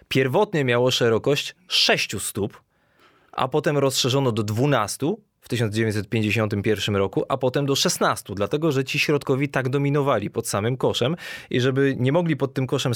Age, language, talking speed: 20-39, Polish, 155 wpm